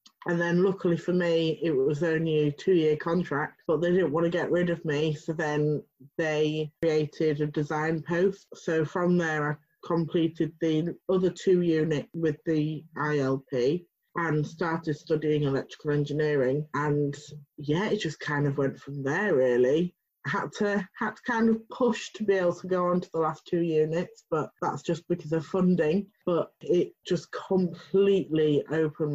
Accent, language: British, English